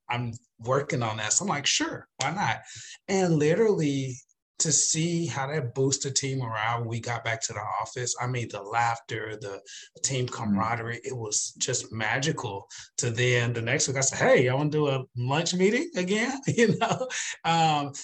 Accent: American